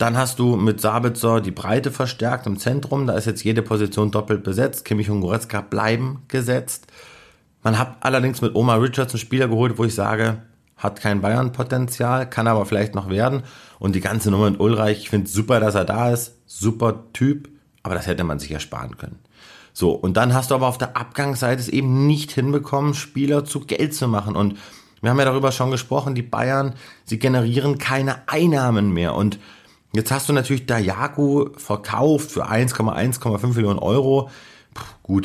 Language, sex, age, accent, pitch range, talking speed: German, male, 30-49, German, 105-135 Hz, 190 wpm